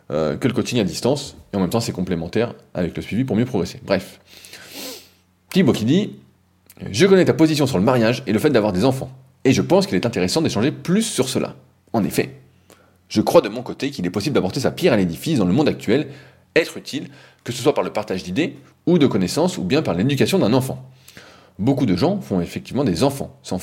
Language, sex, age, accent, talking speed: French, male, 20-39, French, 230 wpm